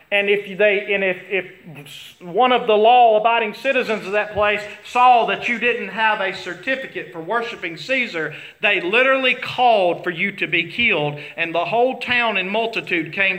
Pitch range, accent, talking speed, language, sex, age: 160-235 Hz, American, 175 wpm, English, male, 40-59